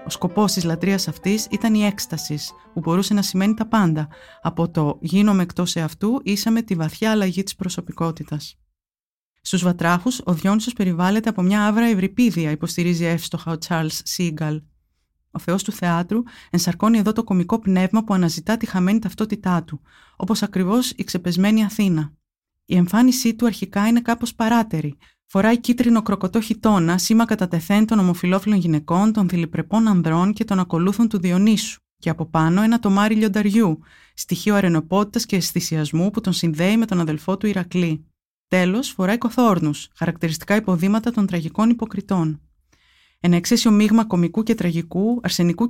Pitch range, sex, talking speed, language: 170-220 Hz, female, 150 wpm, Greek